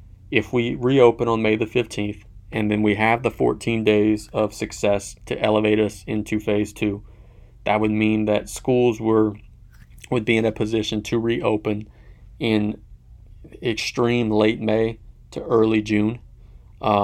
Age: 30-49